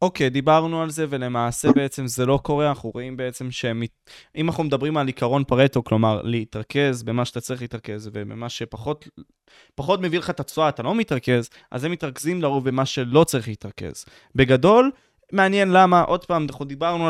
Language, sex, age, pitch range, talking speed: Hebrew, male, 20-39, 125-165 Hz, 180 wpm